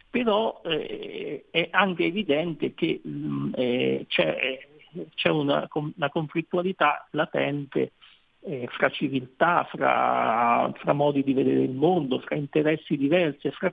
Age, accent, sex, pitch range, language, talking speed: 50-69, native, male, 135-170 Hz, Italian, 120 wpm